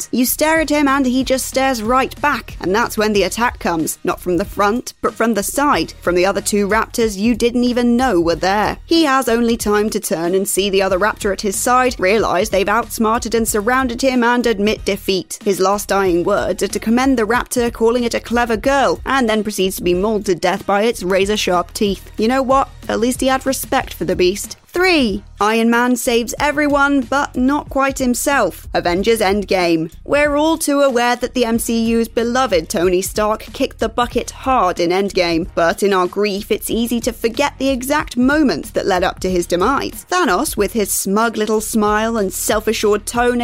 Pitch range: 200-255 Hz